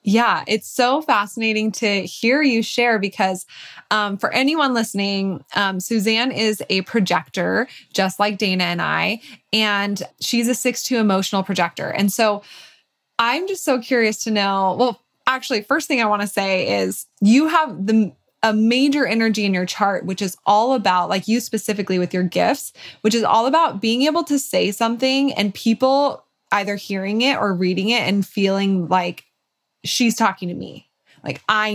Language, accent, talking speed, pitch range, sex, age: English, American, 170 wpm, 195-235 Hz, female, 20-39